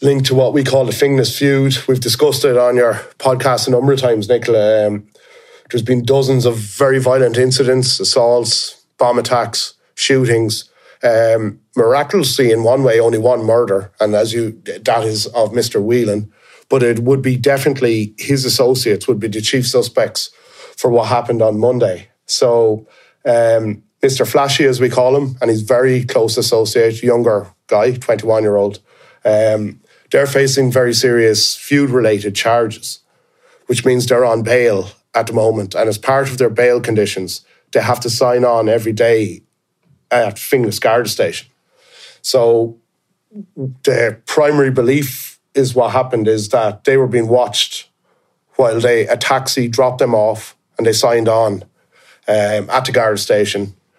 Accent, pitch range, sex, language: Irish, 110-130 Hz, male, English